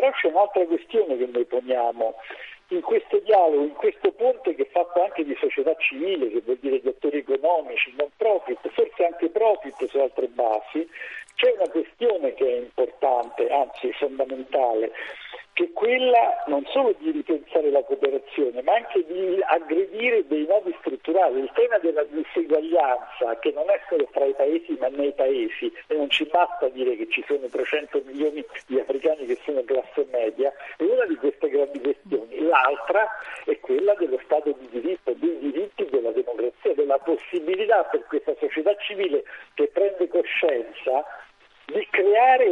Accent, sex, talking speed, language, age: native, male, 160 wpm, Italian, 50-69